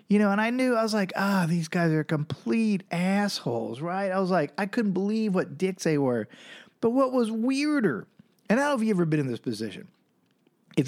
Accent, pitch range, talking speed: American, 135-220 Hz, 230 wpm